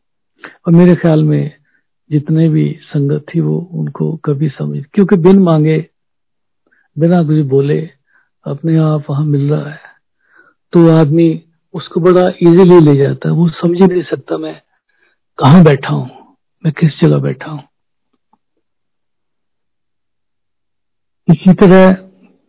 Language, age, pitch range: Hindi, 60-79, 150-180 Hz